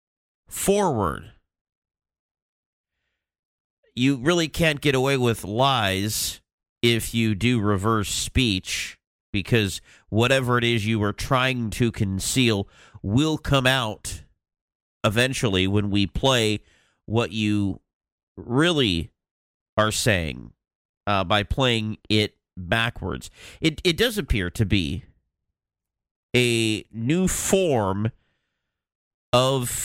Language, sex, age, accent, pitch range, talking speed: English, male, 40-59, American, 100-135 Hz, 100 wpm